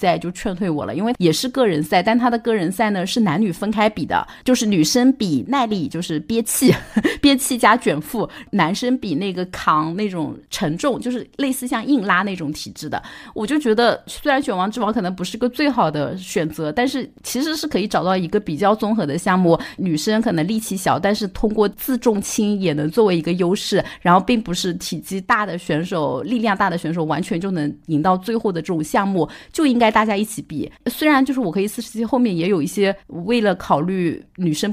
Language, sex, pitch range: Chinese, female, 165-225 Hz